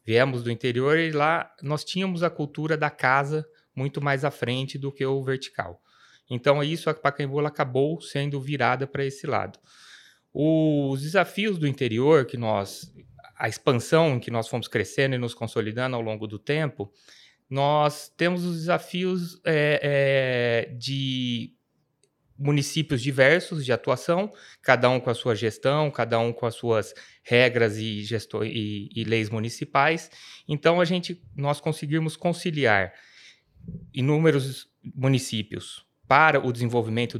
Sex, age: male, 20-39